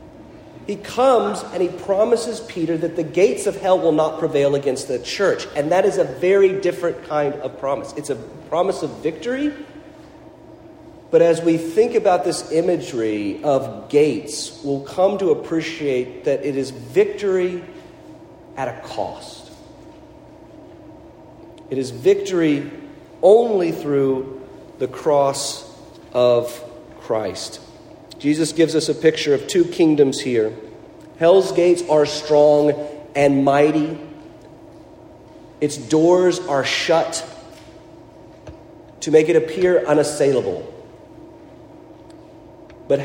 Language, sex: English, male